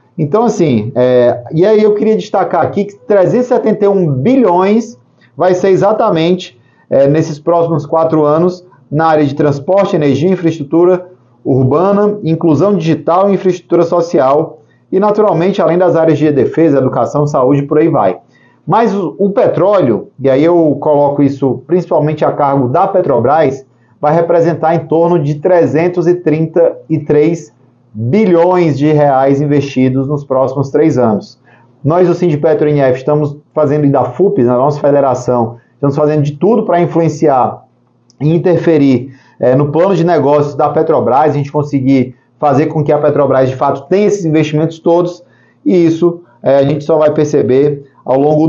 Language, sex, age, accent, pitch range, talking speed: Portuguese, male, 30-49, Brazilian, 140-175 Hz, 150 wpm